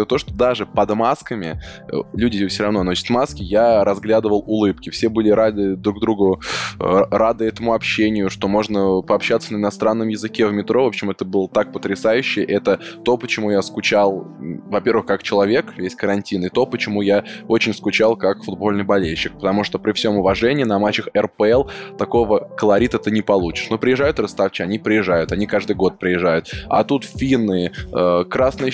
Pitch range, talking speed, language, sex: 100-115 Hz, 170 wpm, Russian, male